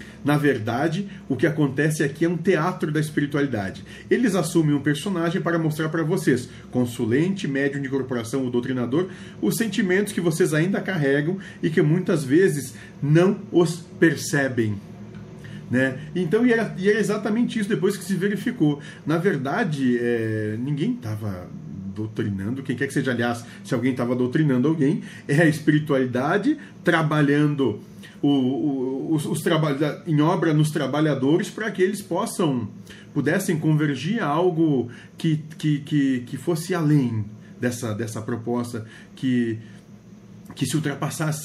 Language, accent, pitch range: Portuguese, Brazilian, 130-180 Hz